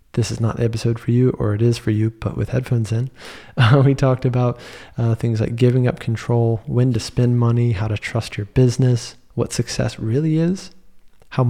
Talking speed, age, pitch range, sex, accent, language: 210 wpm, 20-39, 110-125 Hz, male, American, English